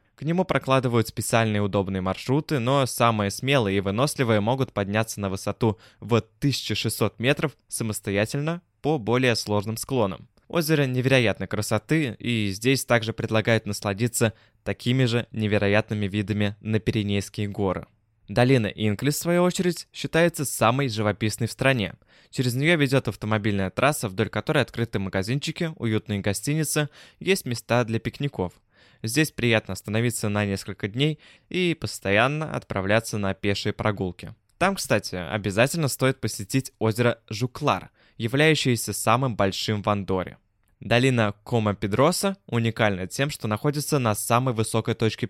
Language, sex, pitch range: Russian, male, 105-135 Hz